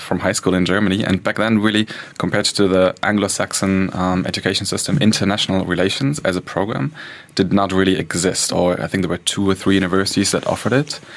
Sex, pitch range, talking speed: male, 90-105 Hz, 195 wpm